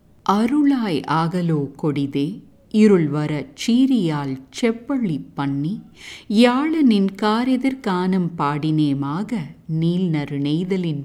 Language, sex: English, female